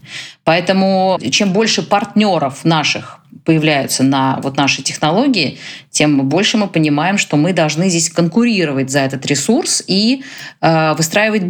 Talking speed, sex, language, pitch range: 130 wpm, female, Russian, 145-195 Hz